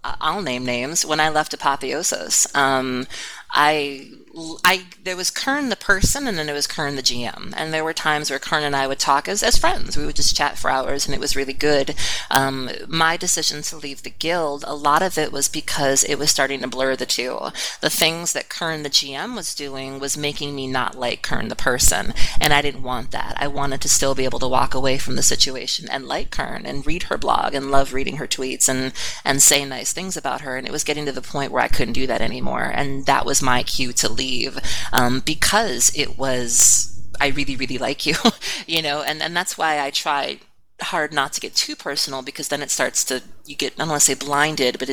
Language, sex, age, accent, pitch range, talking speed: English, female, 30-49, American, 130-150 Hz, 235 wpm